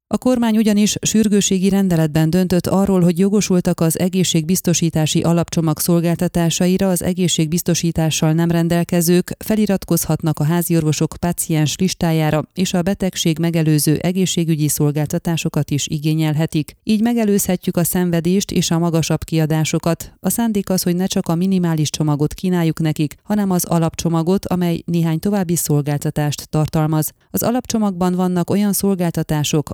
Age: 30-49